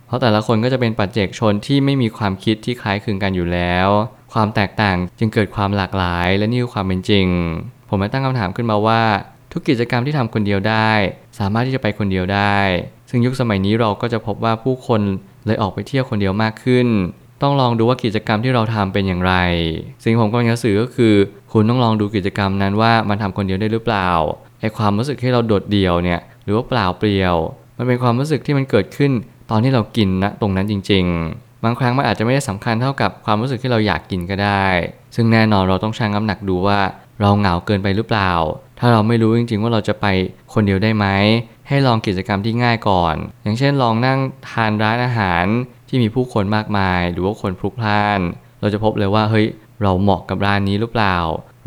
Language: Thai